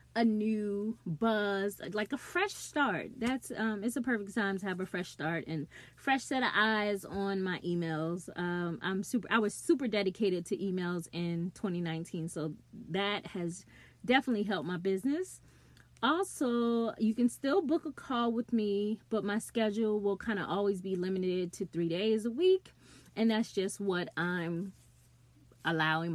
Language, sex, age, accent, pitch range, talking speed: English, female, 20-39, American, 180-235 Hz, 170 wpm